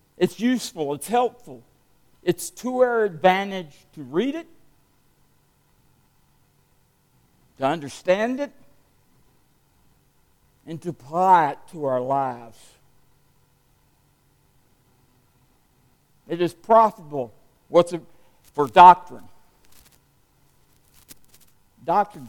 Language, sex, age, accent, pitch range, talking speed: English, male, 60-79, American, 125-185 Hz, 80 wpm